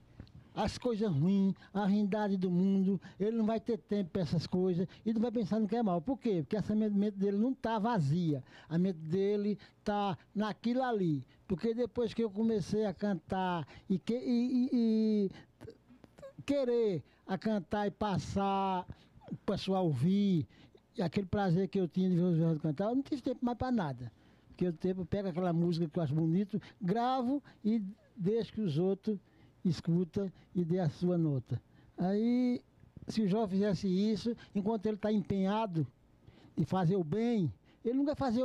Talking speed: 180 wpm